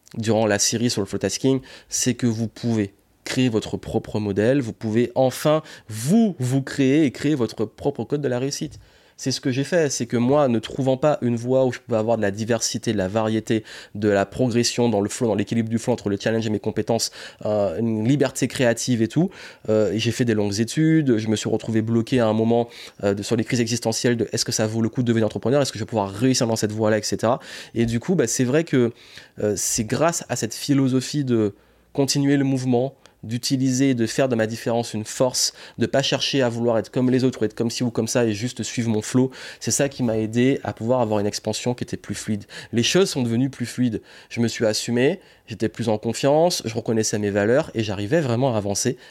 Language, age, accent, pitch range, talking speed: French, 20-39, French, 110-130 Hz, 240 wpm